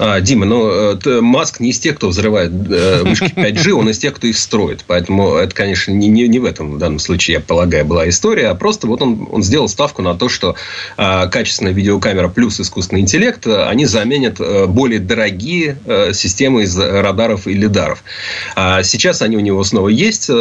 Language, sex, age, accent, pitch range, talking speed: Russian, male, 30-49, native, 95-115 Hz, 170 wpm